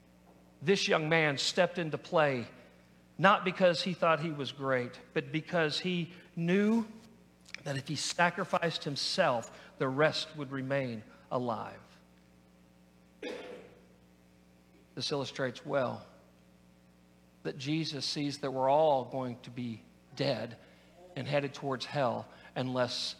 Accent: American